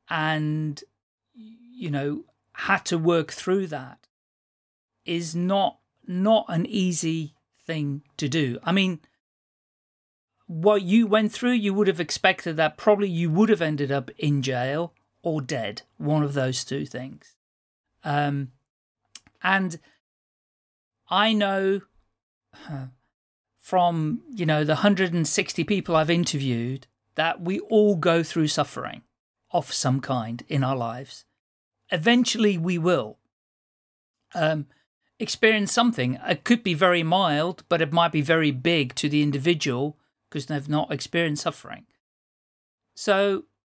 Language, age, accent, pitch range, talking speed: English, 40-59, British, 145-195 Hz, 125 wpm